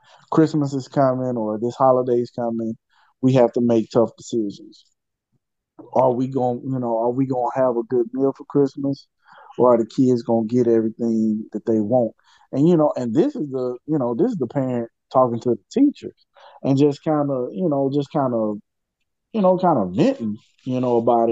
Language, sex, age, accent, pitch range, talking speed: English, male, 20-39, American, 115-135 Hz, 210 wpm